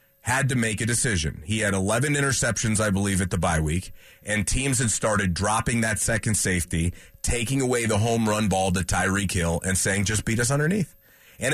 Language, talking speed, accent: English, 205 wpm, American